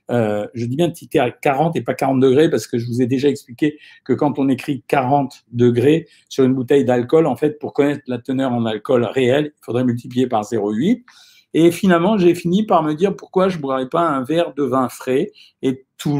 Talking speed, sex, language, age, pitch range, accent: 230 wpm, male, French, 50-69, 115-145 Hz, French